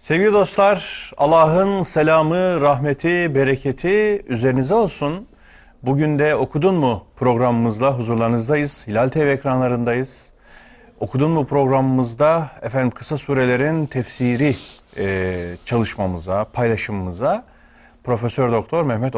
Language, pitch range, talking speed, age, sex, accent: Turkish, 100-150 Hz, 95 wpm, 40-59, male, native